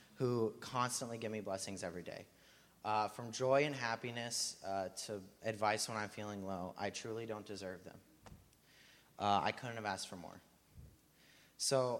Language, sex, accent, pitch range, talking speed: English, male, American, 105-120 Hz, 160 wpm